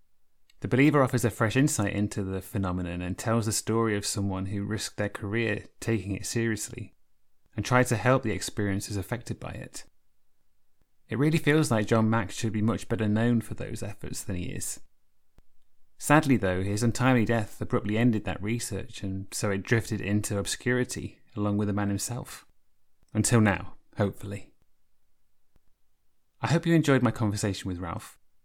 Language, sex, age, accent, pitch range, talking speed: English, male, 30-49, British, 100-125 Hz, 165 wpm